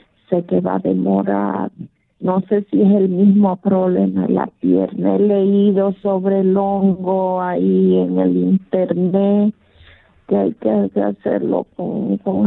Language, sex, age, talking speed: Spanish, female, 50-69, 140 wpm